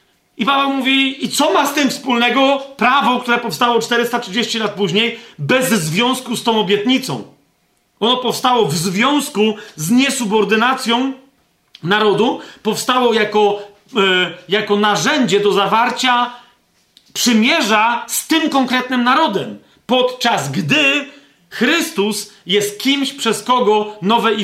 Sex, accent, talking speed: male, native, 115 wpm